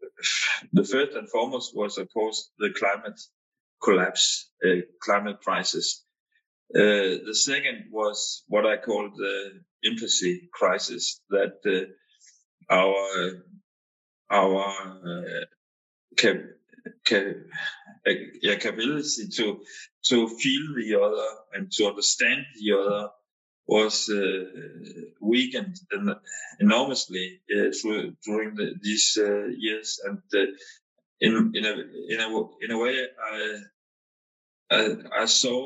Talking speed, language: 110 wpm, English